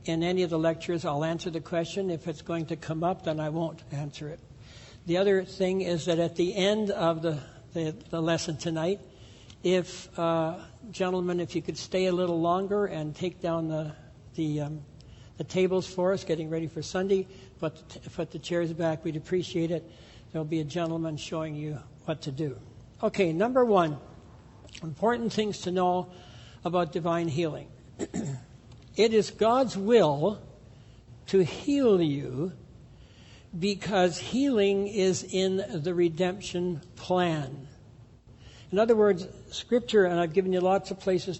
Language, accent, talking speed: English, American, 155 wpm